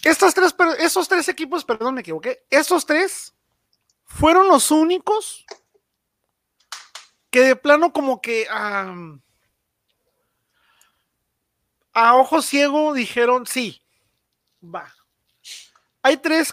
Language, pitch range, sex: Spanish, 205-305 Hz, male